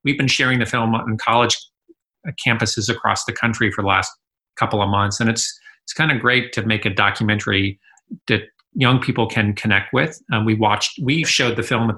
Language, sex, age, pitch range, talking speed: English, male, 40-59, 110-130 Hz, 205 wpm